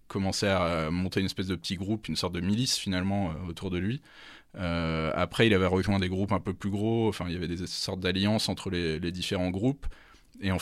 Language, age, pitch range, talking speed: French, 20-39, 85-100 Hz, 245 wpm